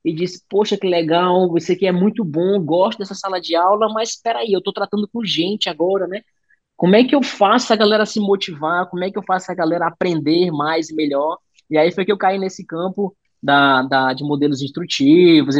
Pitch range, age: 145-195 Hz, 20-39